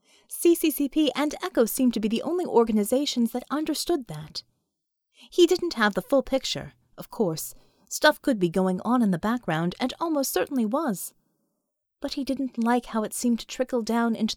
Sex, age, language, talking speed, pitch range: female, 30-49, English, 180 wpm, 200-285 Hz